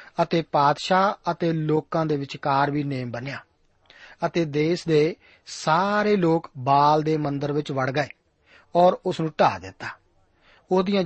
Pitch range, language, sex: 145-175 Hz, Punjabi, male